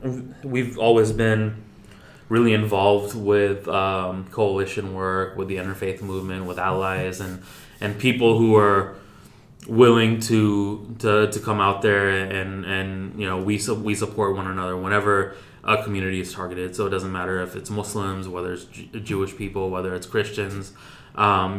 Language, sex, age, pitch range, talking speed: English, male, 20-39, 95-105 Hz, 160 wpm